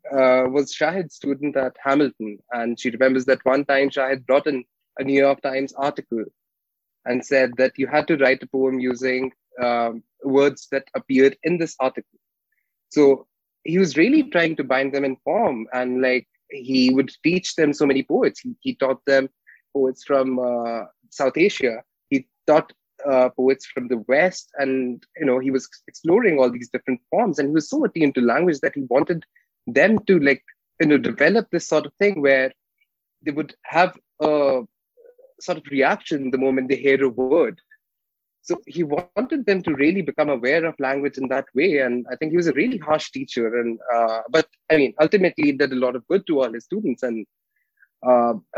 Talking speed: 190 wpm